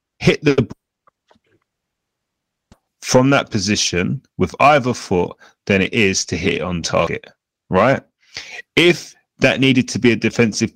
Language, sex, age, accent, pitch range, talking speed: English, male, 30-49, British, 95-125 Hz, 135 wpm